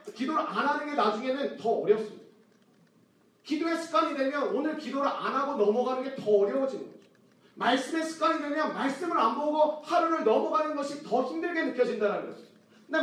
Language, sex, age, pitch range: Korean, male, 40-59, 220-305 Hz